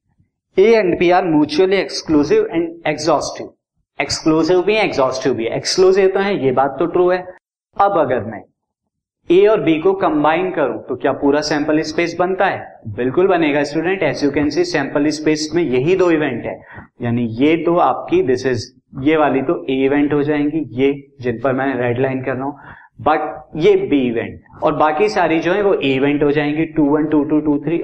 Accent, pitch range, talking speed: native, 135-185 Hz, 145 wpm